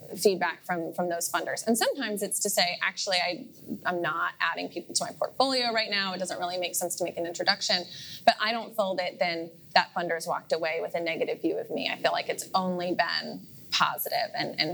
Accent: American